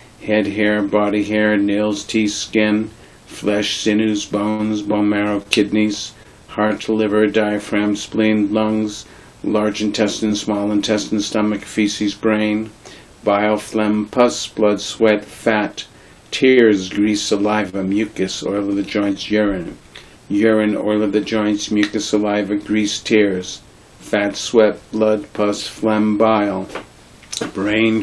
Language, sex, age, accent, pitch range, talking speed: English, male, 50-69, American, 105-110 Hz, 120 wpm